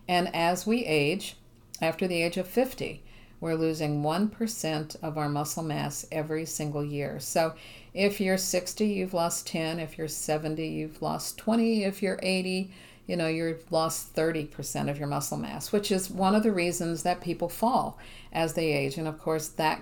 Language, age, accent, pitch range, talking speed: English, 50-69, American, 145-175 Hz, 190 wpm